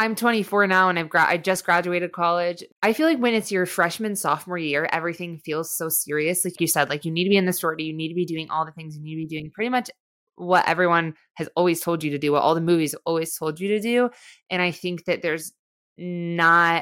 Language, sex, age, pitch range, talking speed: English, female, 20-39, 155-180 Hz, 255 wpm